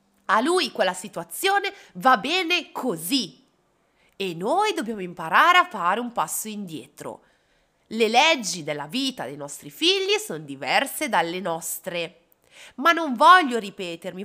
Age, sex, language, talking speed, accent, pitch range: 30-49, female, Italian, 130 wpm, native, 205-320 Hz